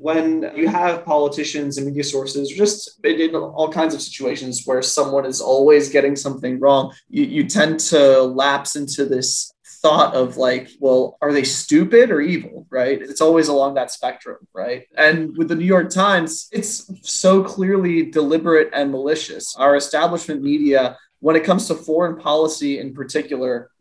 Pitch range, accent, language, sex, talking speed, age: 140-175 Hz, American, English, male, 165 wpm, 20-39